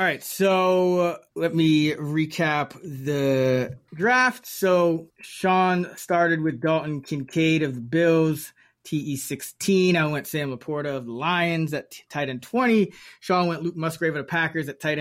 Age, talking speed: 20-39, 150 wpm